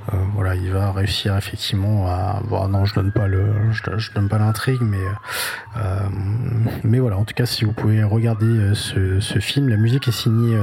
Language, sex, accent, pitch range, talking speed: French, male, French, 100-125 Hz, 205 wpm